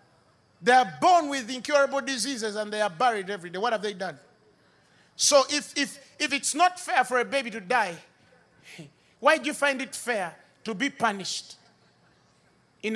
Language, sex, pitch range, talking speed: English, male, 210-320 Hz, 175 wpm